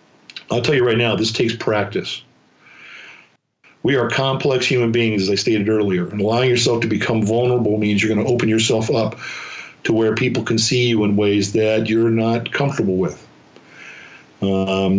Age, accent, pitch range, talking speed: 50-69, American, 105-125 Hz, 170 wpm